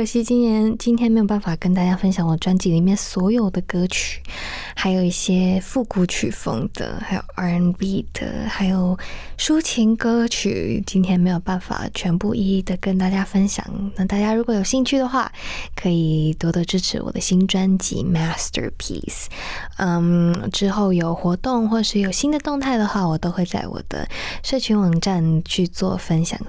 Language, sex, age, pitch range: Chinese, female, 20-39, 185-235 Hz